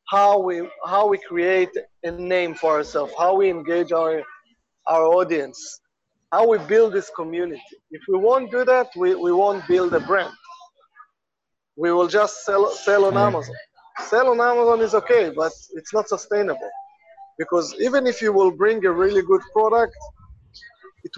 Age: 30-49